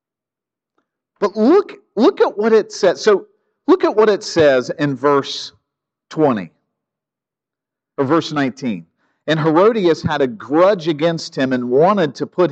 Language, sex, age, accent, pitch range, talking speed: English, male, 50-69, American, 140-195 Hz, 145 wpm